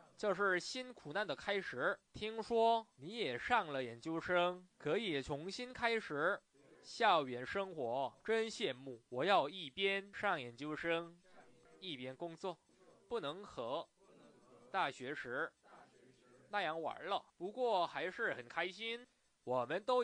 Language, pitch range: Korean, 160-230 Hz